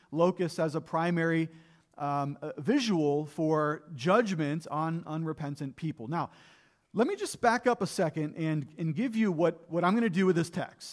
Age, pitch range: 40-59, 150-190 Hz